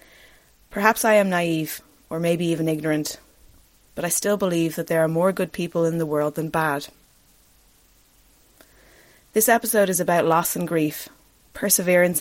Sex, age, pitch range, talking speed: female, 20-39, 160-185 Hz, 150 wpm